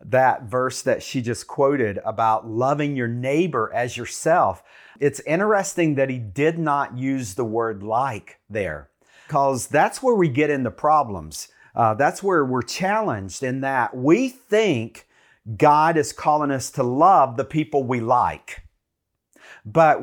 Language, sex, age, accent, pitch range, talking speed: English, male, 50-69, American, 125-165 Hz, 150 wpm